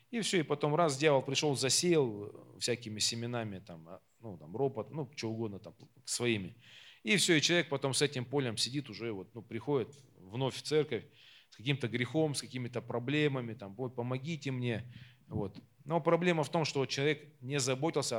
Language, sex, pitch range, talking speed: Russian, male, 115-145 Hz, 180 wpm